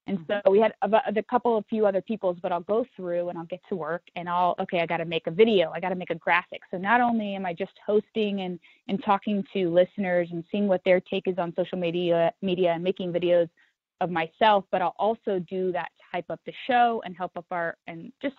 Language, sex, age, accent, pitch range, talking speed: English, female, 20-39, American, 175-205 Hz, 250 wpm